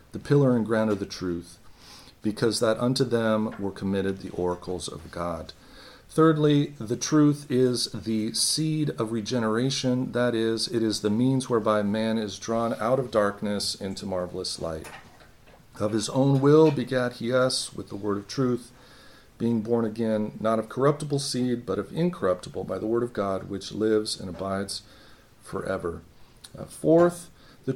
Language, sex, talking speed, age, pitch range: English, male, 165 wpm, 40-59, 105-130 Hz